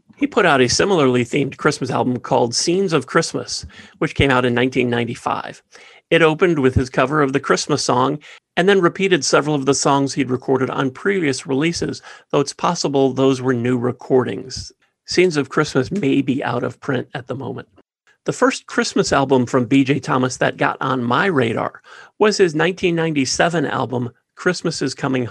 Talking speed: 175 wpm